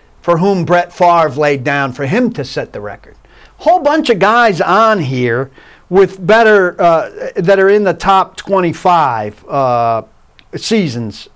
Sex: male